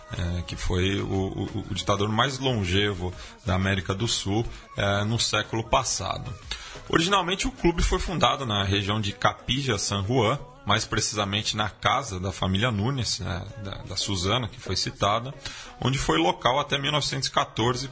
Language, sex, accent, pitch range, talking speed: Portuguese, male, Brazilian, 100-130 Hz, 145 wpm